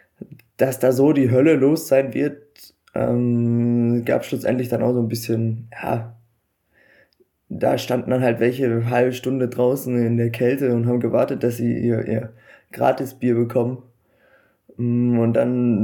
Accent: German